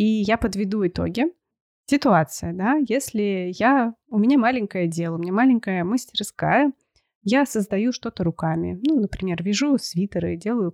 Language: Russian